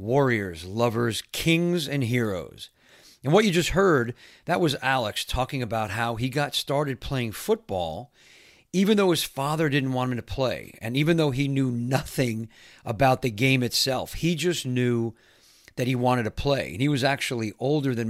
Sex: male